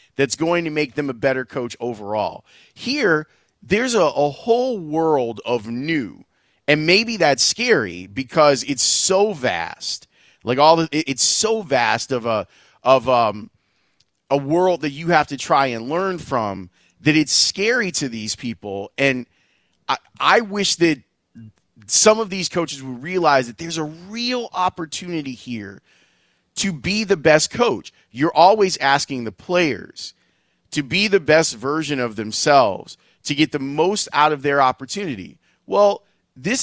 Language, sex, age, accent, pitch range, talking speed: English, male, 30-49, American, 125-170 Hz, 155 wpm